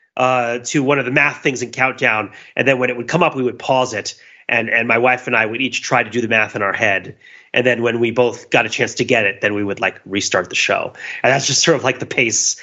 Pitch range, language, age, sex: 120-160 Hz, English, 30-49, male